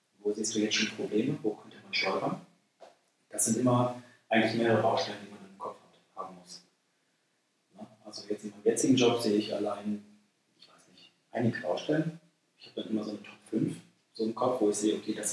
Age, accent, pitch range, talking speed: 40-59, German, 105-125 Hz, 210 wpm